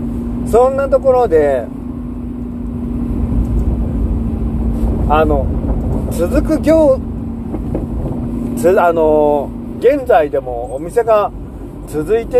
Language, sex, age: Japanese, male, 40-59